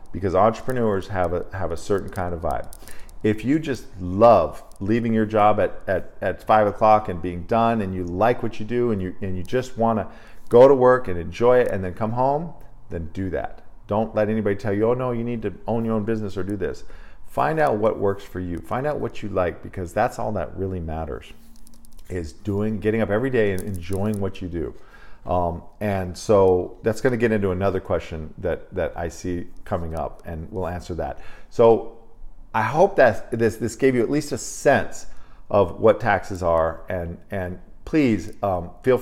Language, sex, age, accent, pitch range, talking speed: English, male, 50-69, American, 90-115 Hz, 210 wpm